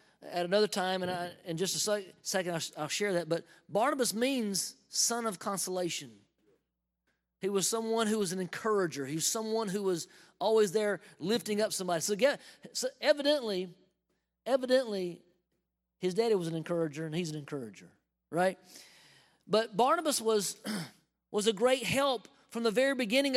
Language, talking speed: English, 155 wpm